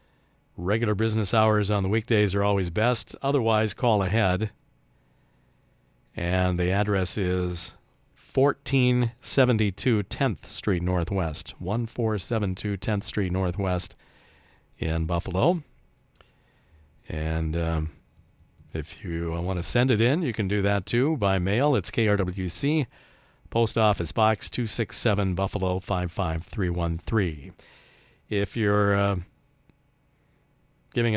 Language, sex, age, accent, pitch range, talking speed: English, male, 50-69, American, 90-120 Hz, 105 wpm